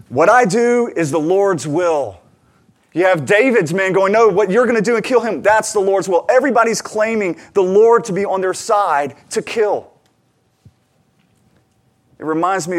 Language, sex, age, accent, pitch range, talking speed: English, male, 30-49, American, 130-195 Hz, 185 wpm